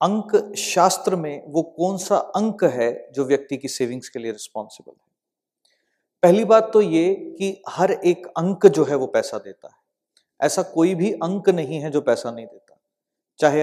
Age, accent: 40-59, native